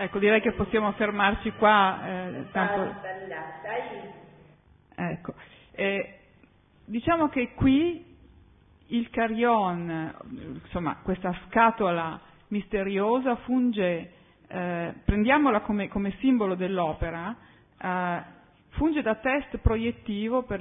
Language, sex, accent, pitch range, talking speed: Italian, female, native, 180-235 Hz, 95 wpm